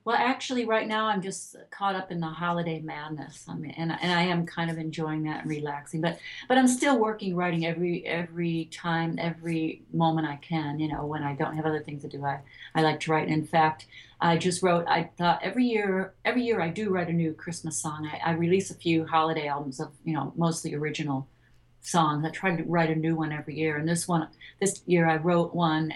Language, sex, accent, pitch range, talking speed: English, female, American, 150-180 Hz, 230 wpm